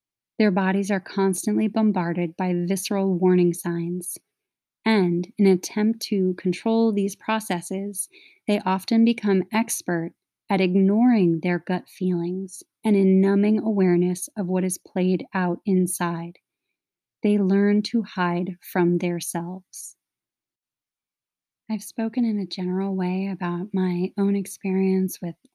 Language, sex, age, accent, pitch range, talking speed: English, female, 30-49, American, 180-205 Hz, 125 wpm